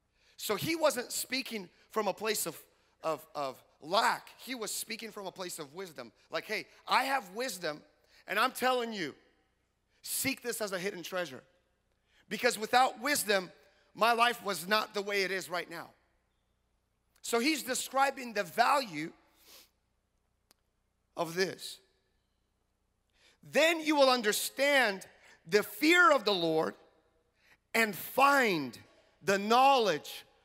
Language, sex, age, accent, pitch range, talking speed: English, male, 40-59, American, 165-245 Hz, 130 wpm